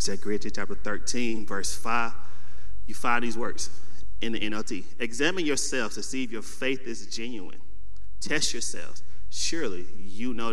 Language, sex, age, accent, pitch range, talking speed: English, male, 30-49, American, 90-110 Hz, 155 wpm